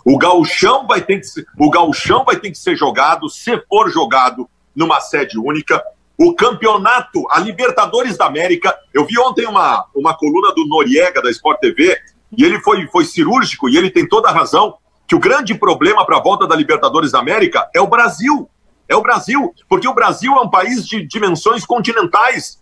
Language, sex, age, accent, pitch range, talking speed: Portuguese, male, 50-69, Brazilian, 215-315 Hz, 195 wpm